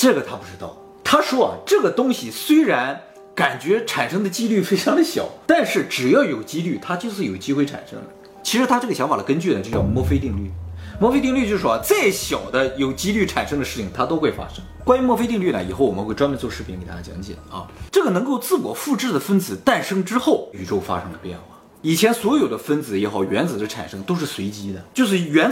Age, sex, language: 30-49, male, Chinese